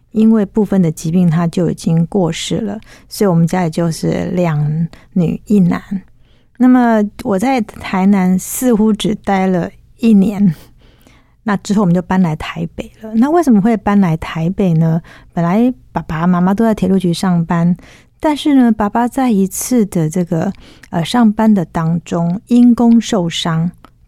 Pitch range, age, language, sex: 175-220 Hz, 50-69, Chinese, female